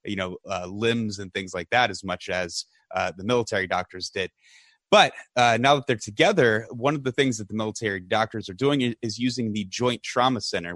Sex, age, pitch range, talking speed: male, 30-49, 105-125 Hz, 210 wpm